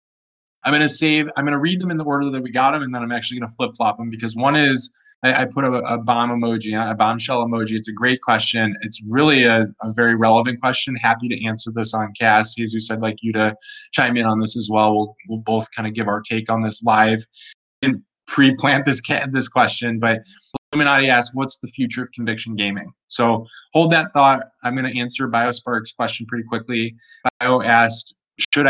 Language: English